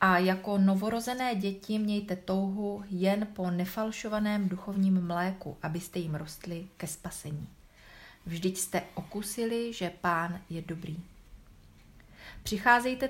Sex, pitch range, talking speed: female, 170-195 Hz, 110 wpm